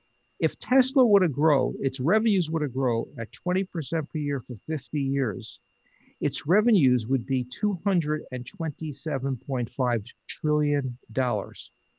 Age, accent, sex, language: 50-69, American, male, English